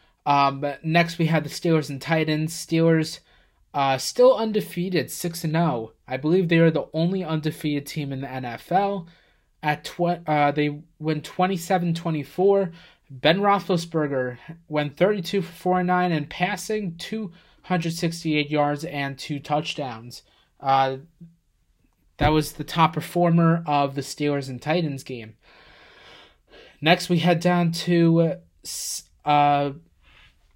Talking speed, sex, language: 120 wpm, male, English